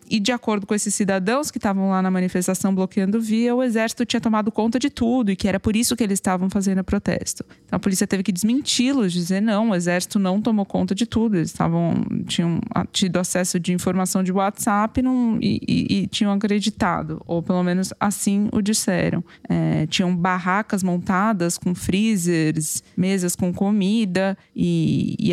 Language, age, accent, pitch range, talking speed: Portuguese, 20-39, Brazilian, 180-225 Hz, 180 wpm